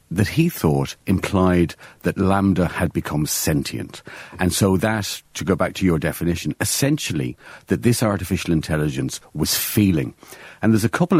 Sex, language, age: male, English, 50-69